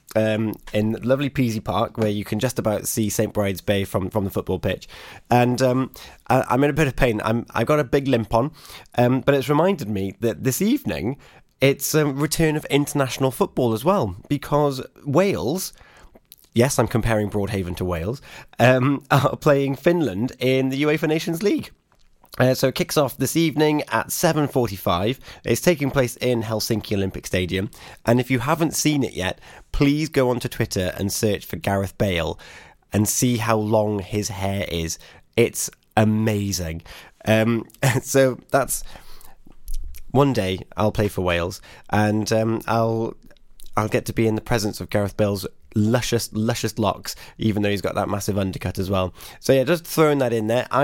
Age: 30-49